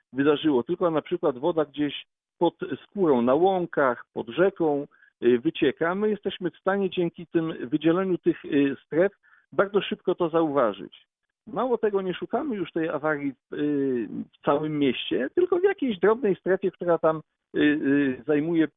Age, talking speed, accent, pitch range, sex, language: 50-69, 140 wpm, native, 155-195 Hz, male, Polish